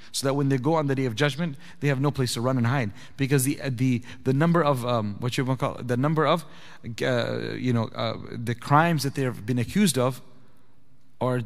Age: 30-49